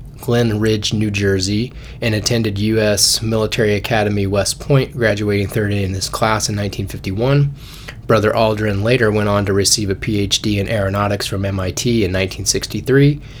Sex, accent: male, American